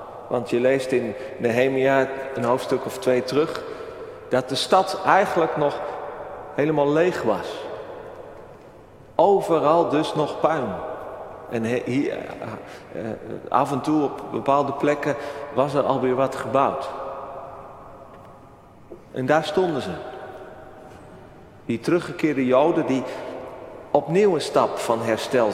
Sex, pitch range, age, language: male, 135-175 Hz, 40-59, Dutch